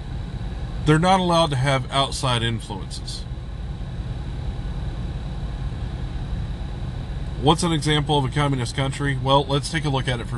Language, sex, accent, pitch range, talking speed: English, male, American, 95-145 Hz, 125 wpm